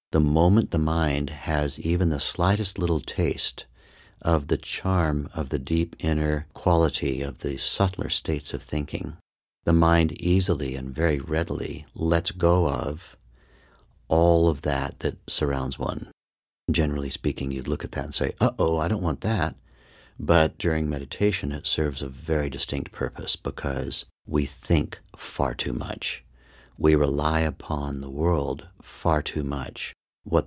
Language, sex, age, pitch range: English, male, 60-79, 70-80 Hz